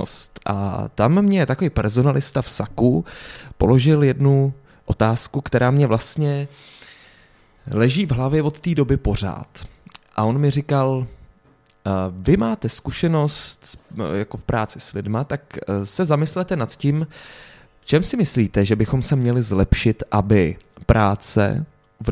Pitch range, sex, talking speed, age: 105-130 Hz, male, 130 wpm, 20-39